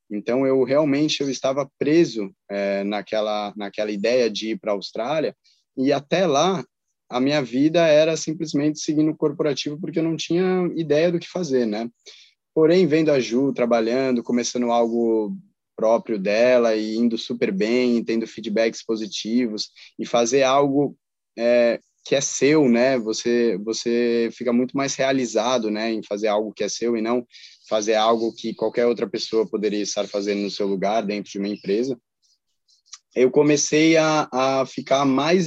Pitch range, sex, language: 110-140 Hz, male, Portuguese